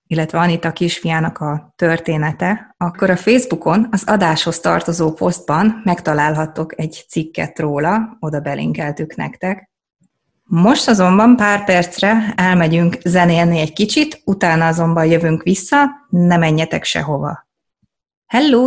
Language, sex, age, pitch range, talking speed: Hungarian, female, 20-39, 165-210 Hz, 120 wpm